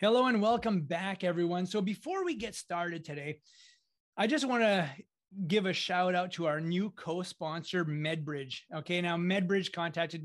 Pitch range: 160-190 Hz